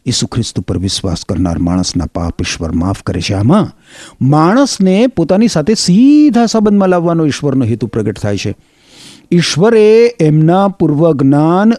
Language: Gujarati